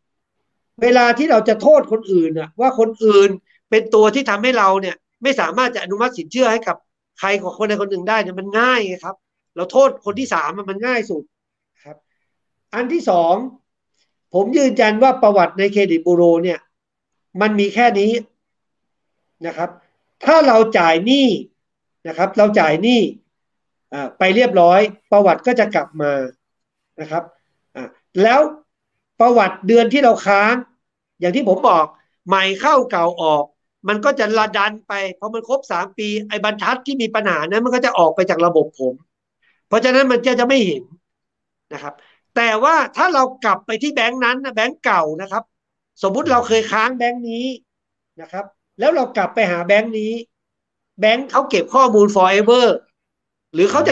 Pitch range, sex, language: 190-250 Hz, male, Thai